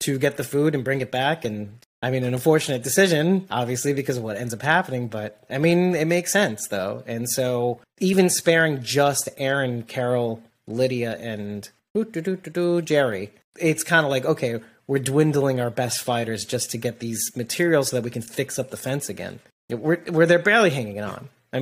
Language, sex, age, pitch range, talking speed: English, male, 30-49, 115-155 Hz, 190 wpm